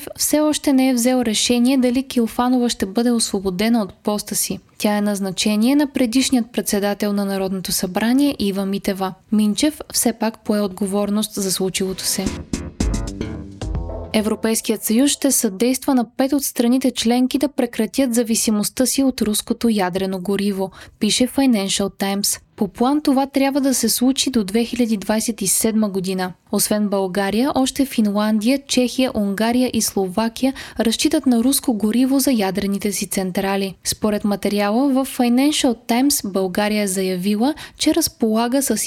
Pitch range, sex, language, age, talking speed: 200-255 Hz, female, Bulgarian, 20-39, 140 wpm